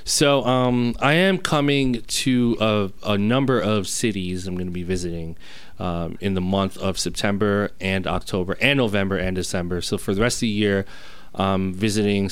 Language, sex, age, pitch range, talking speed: English, male, 30-49, 95-110 Hz, 180 wpm